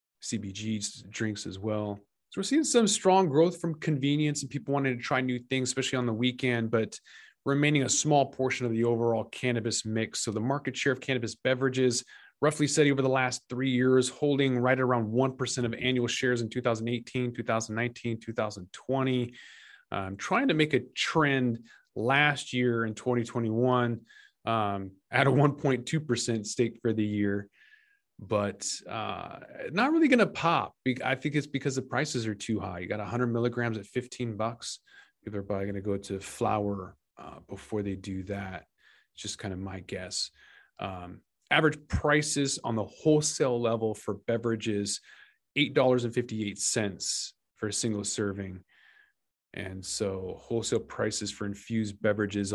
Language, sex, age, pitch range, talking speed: English, male, 20-39, 105-130 Hz, 155 wpm